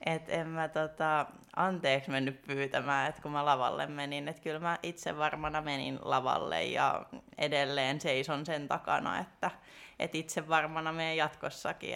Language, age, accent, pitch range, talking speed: Finnish, 20-39, native, 140-160 Hz, 150 wpm